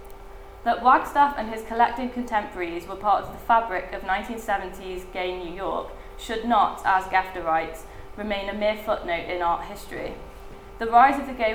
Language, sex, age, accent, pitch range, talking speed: English, female, 10-29, British, 190-230 Hz, 170 wpm